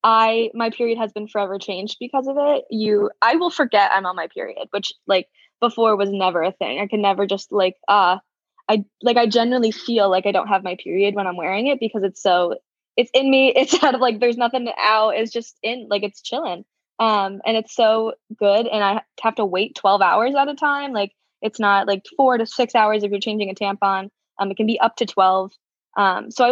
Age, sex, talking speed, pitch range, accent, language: 10-29, female, 235 wpm, 195-230 Hz, American, English